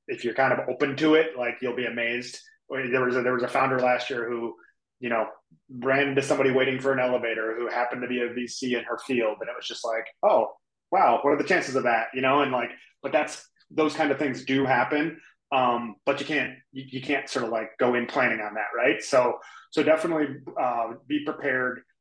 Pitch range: 120-140 Hz